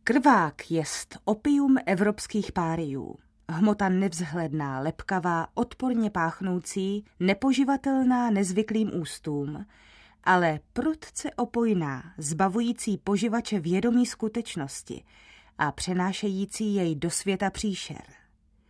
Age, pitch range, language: 30-49, 170-240 Hz, Czech